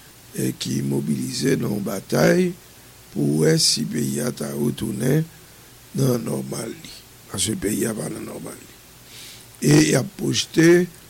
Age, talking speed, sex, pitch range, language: 60-79, 145 wpm, male, 120-170 Hz, English